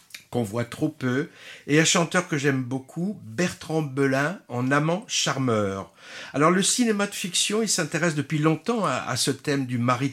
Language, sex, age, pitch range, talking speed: French, male, 60-79, 130-170 Hz, 180 wpm